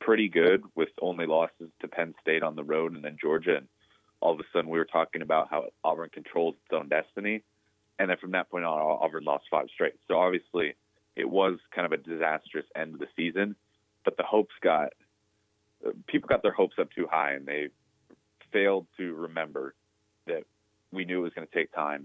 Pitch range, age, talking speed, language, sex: 80-100 Hz, 30-49, 205 wpm, English, male